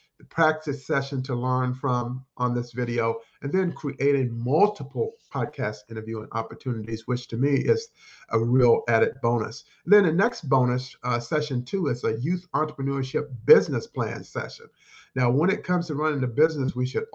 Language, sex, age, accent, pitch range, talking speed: English, male, 50-69, American, 120-150 Hz, 170 wpm